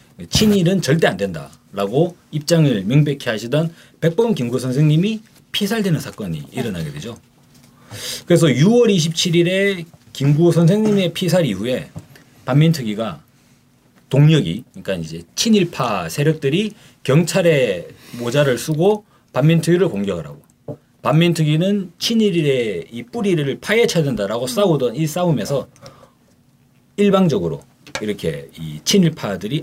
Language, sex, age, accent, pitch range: Korean, male, 40-59, native, 130-185 Hz